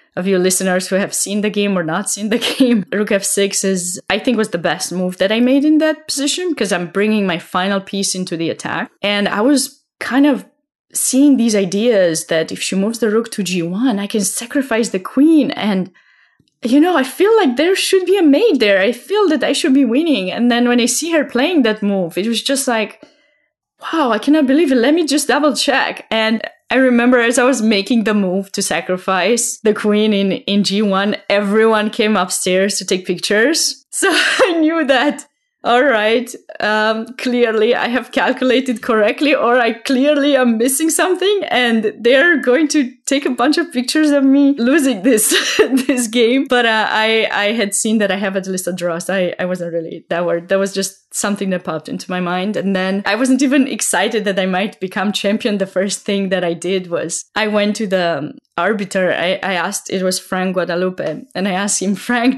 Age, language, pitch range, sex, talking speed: 20-39, English, 195-270 Hz, female, 215 wpm